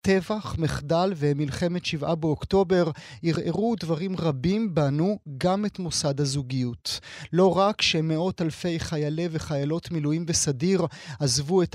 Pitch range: 145-180 Hz